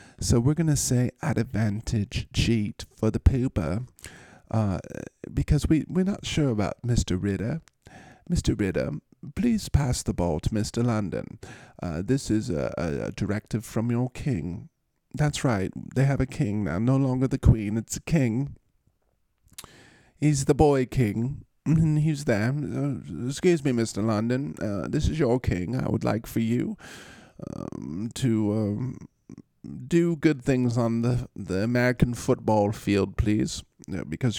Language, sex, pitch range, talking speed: English, male, 100-130 Hz, 155 wpm